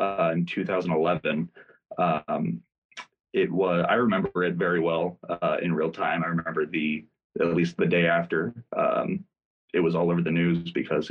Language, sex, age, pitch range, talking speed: English, male, 20-39, 85-110 Hz, 165 wpm